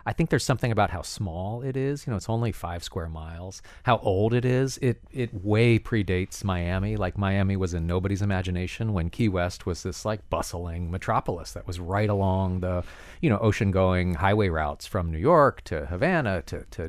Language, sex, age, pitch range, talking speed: English, male, 40-59, 90-115 Hz, 205 wpm